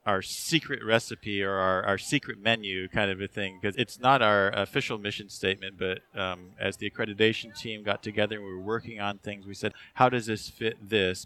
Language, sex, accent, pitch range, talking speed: English, male, American, 95-115 Hz, 215 wpm